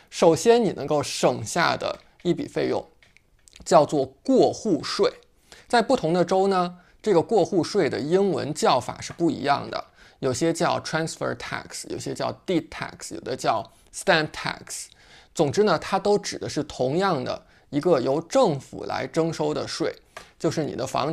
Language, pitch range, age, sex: Chinese, 150-205 Hz, 20-39, male